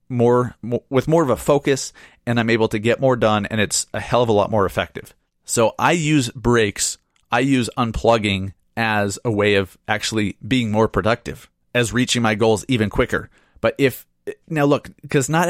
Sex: male